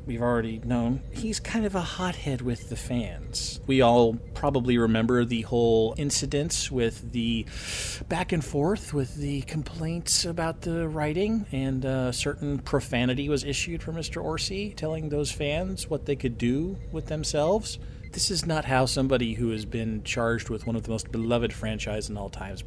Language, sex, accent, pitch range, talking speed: English, male, American, 115-150 Hz, 175 wpm